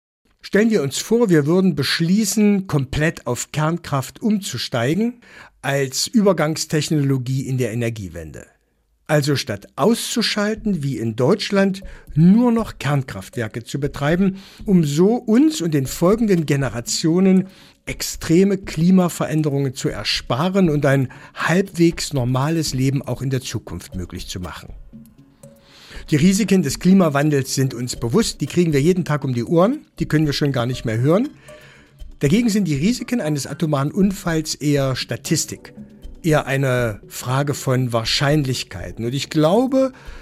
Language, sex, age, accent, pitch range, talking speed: German, male, 60-79, German, 130-190 Hz, 135 wpm